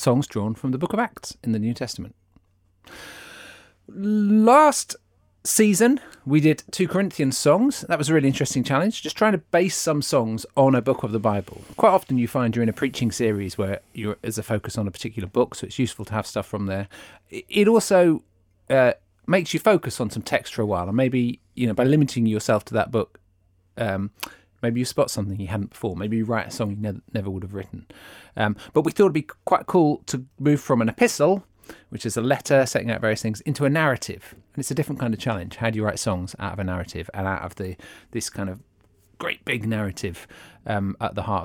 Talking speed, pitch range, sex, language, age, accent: 225 wpm, 100-140 Hz, male, English, 30-49, British